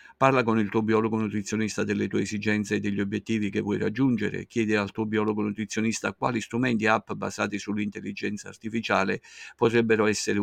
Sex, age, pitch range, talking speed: male, 50-69, 105-115 Hz, 165 wpm